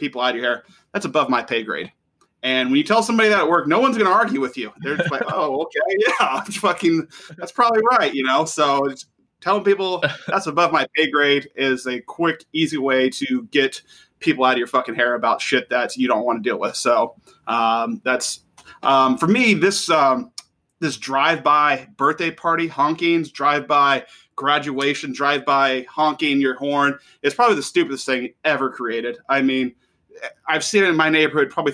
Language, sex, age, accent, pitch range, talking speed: English, male, 30-49, American, 130-195 Hz, 200 wpm